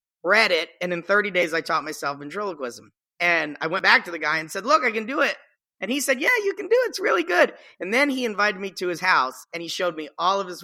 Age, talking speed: 40-59, 280 wpm